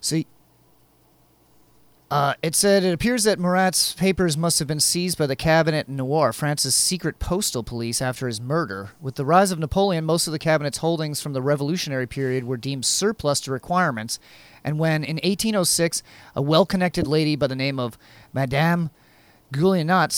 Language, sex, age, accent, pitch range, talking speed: English, male, 30-49, American, 130-170 Hz, 165 wpm